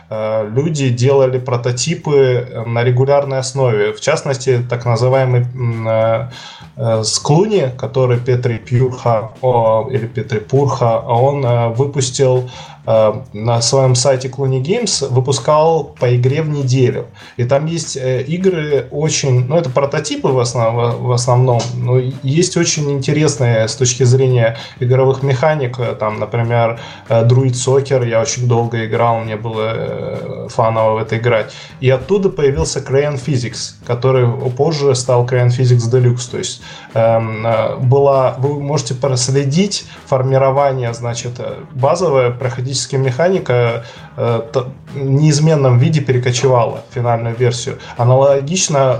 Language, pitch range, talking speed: Russian, 120-140 Hz, 125 wpm